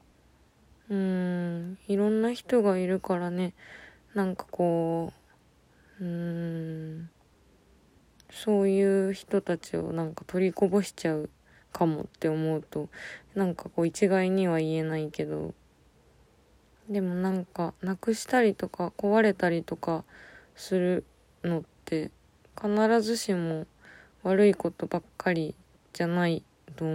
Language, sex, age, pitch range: Japanese, female, 20-39, 165-200 Hz